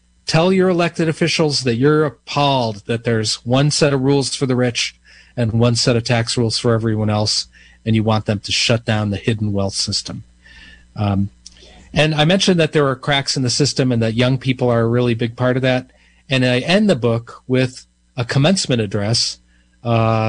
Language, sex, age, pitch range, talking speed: English, male, 40-59, 105-130 Hz, 200 wpm